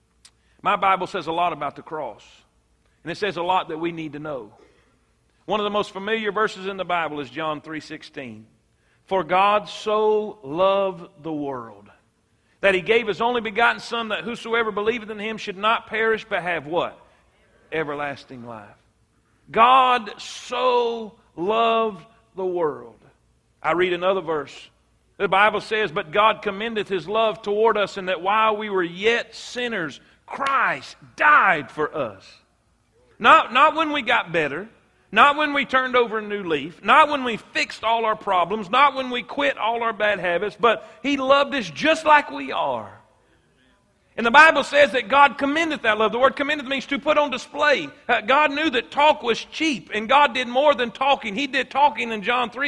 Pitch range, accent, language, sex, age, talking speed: 185-260 Hz, American, English, male, 50-69, 180 wpm